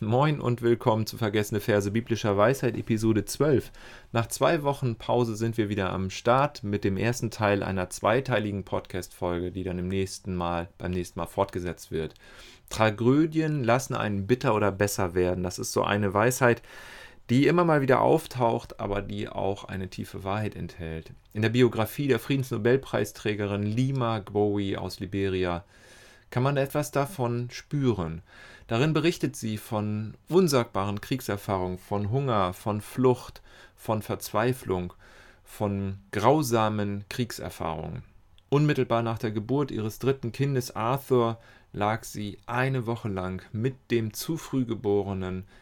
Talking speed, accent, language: 140 wpm, German, German